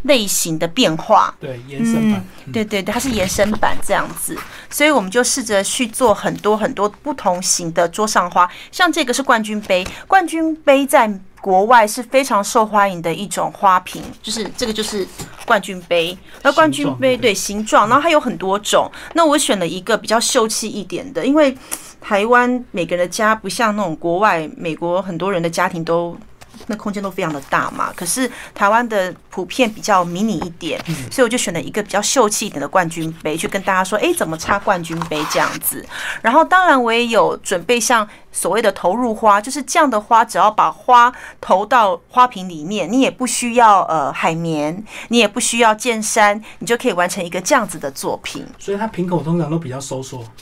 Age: 30-49